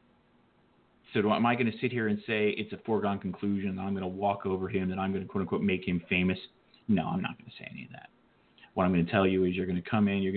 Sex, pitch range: male, 95-120 Hz